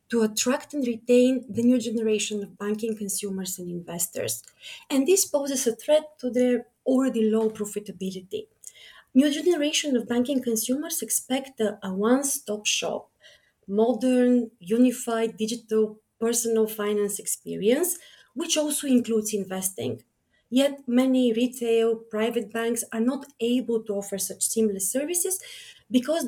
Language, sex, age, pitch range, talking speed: English, female, 30-49, 215-260 Hz, 130 wpm